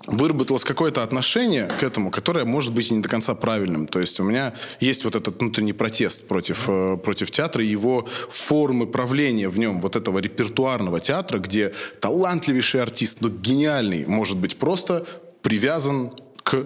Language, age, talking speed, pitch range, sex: Russian, 20-39, 160 wpm, 105-135 Hz, male